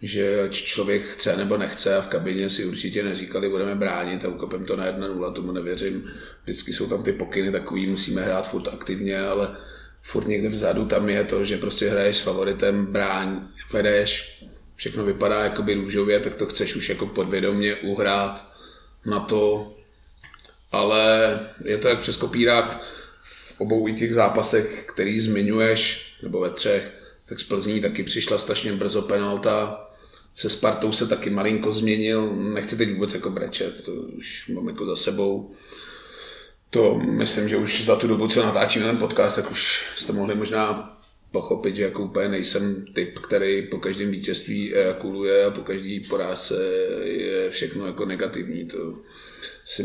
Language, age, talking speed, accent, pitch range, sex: Czech, 30-49, 160 wpm, native, 100-110 Hz, male